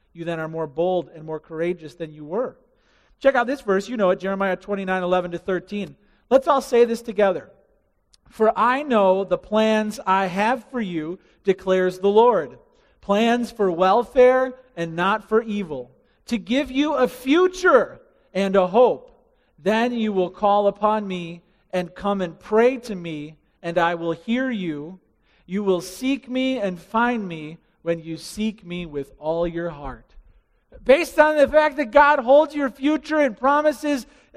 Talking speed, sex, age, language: 175 wpm, male, 40-59, English